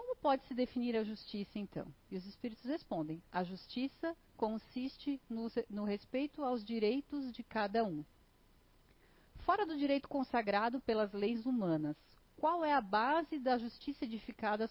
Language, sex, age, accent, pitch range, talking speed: Portuguese, female, 40-59, Brazilian, 185-255 Hz, 145 wpm